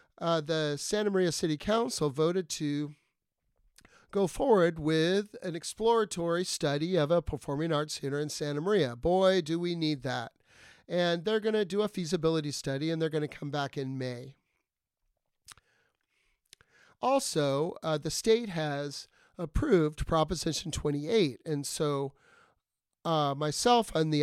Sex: male